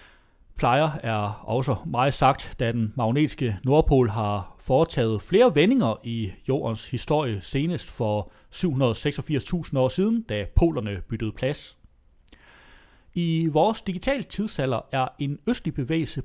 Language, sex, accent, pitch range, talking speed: Danish, male, native, 115-160 Hz, 120 wpm